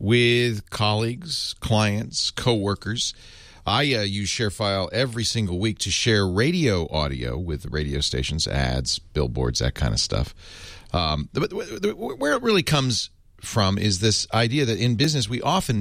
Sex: male